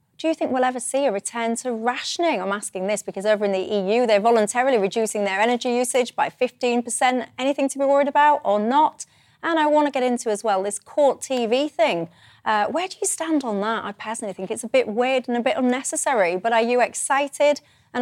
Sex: female